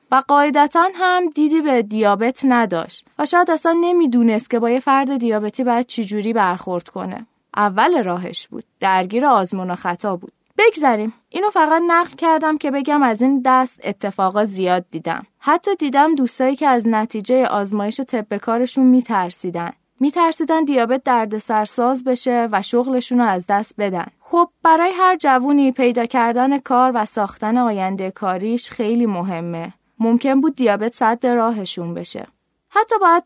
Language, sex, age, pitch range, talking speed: Persian, female, 20-39, 215-290 Hz, 150 wpm